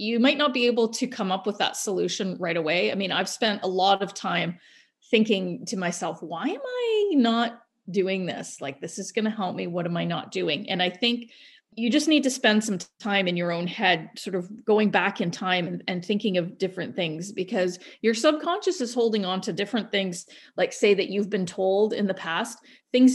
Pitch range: 185-245 Hz